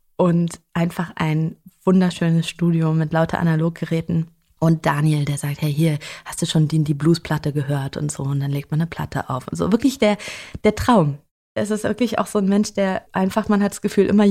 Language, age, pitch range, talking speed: German, 20-39, 170-205 Hz, 210 wpm